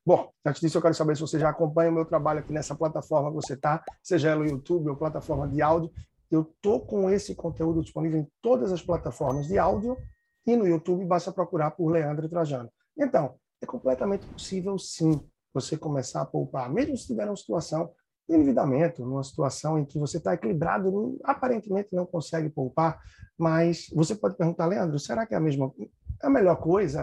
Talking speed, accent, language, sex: 195 wpm, Brazilian, Portuguese, male